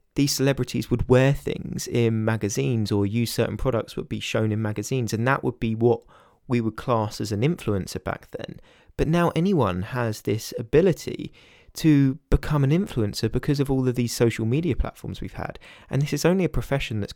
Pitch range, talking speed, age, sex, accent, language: 105-145 Hz, 195 wpm, 20-39, male, British, English